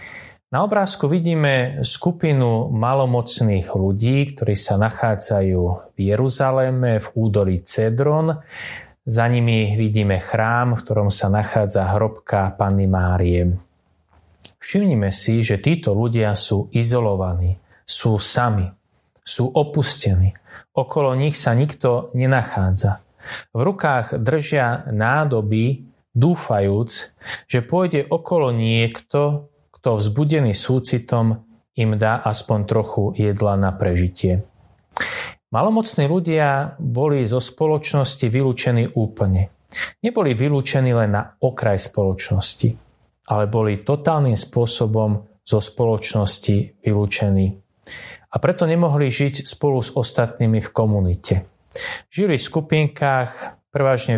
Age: 20-39